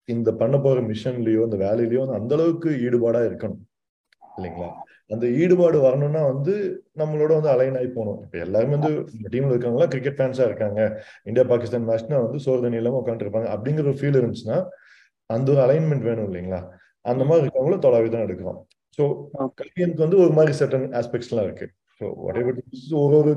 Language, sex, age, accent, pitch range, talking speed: Tamil, male, 30-49, native, 110-140 Hz, 135 wpm